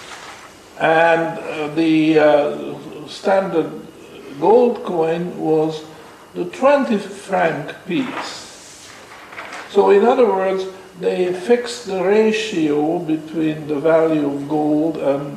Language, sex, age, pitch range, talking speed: English, male, 50-69, 155-205 Hz, 100 wpm